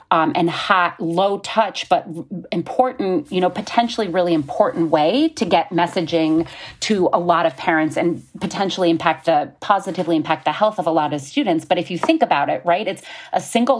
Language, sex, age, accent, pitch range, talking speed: English, female, 30-49, American, 160-200 Hz, 190 wpm